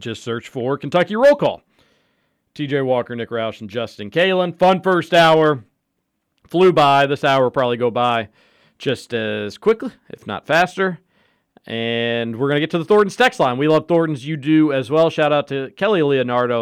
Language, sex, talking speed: English, male, 190 wpm